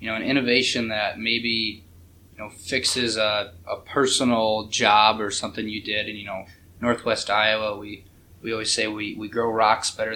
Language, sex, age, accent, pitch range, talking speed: English, male, 20-39, American, 105-120 Hz, 185 wpm